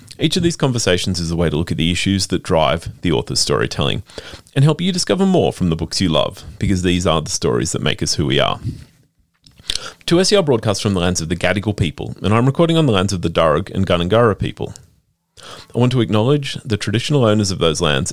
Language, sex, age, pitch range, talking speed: English, male, 30-49, 90-135 Hz, 230 wpm